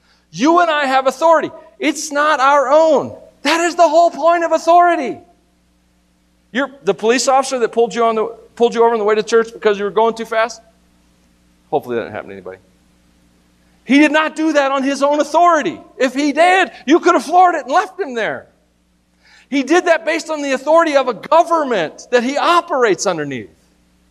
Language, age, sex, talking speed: English, 40-59, male, 200 wpm